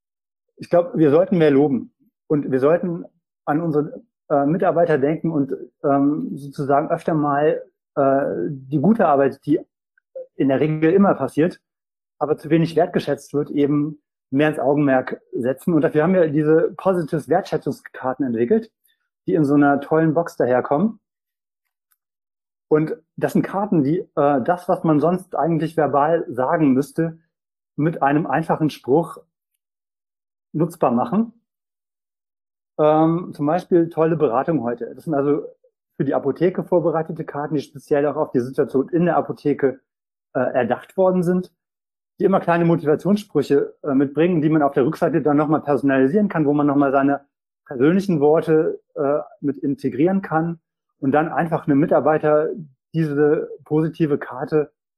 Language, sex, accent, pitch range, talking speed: German, male, German, 145-170 Hz, 145 wpm